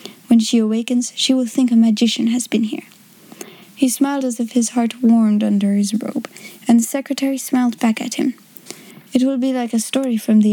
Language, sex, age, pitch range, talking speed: English, female, 10-29, 220-255 Hz, 205 wpm